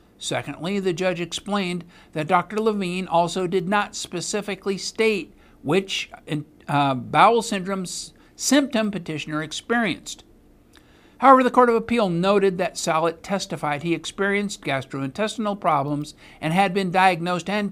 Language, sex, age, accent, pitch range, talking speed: English, male, 60-79, American, 145-195 Hz, 125 wpm